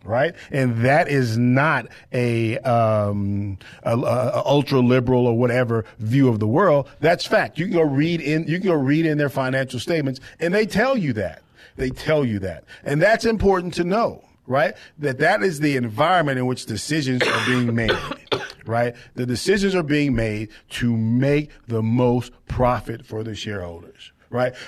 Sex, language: male, English